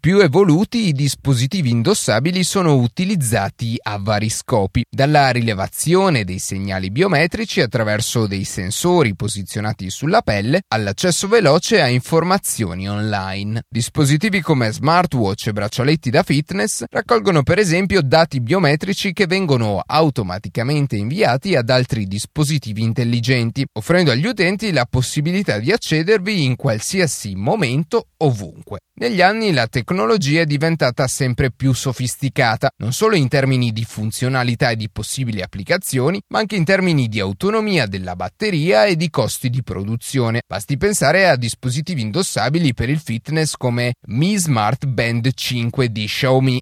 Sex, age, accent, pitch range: male, 30-49, native, 115-170 Hz